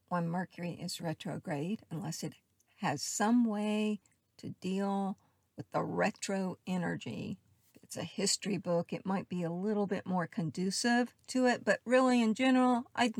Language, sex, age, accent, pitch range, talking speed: English, female, 50-69, American, 175-225 Hz, 155 wpm